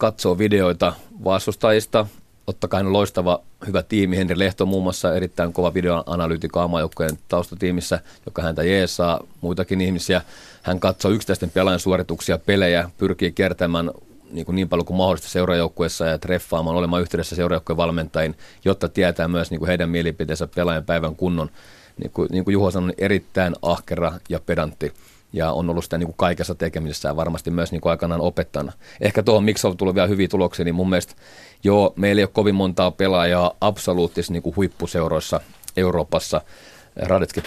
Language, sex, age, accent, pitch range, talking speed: Finnish, male, 40-59, native, 85-95 Hz, 160 wpm